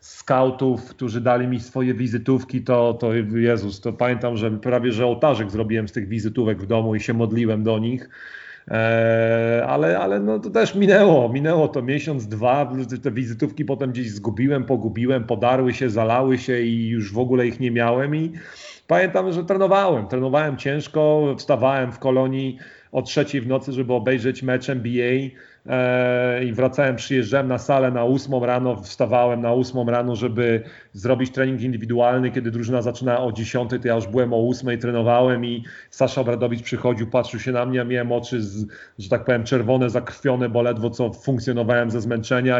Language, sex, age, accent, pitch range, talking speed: Polish, male, 40-59, native, 115-130 Hz, 170 wpm